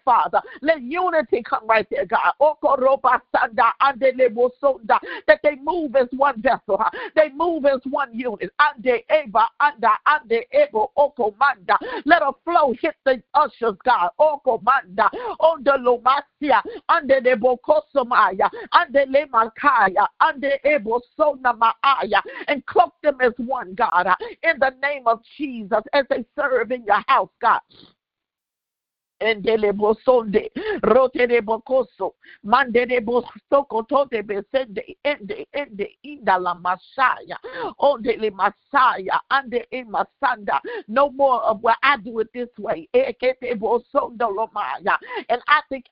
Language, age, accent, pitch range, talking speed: English, 50-69, American, 235-310 Hz, 110 wpm